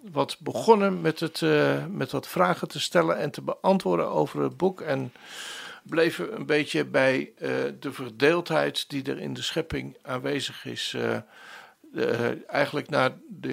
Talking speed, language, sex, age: 160 wpm, Dutch, male, 50-69